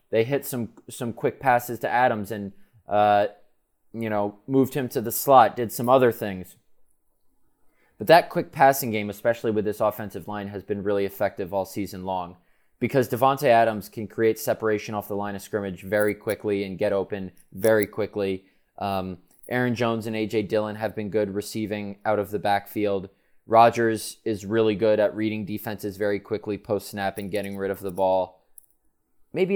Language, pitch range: English, 100-115 Hz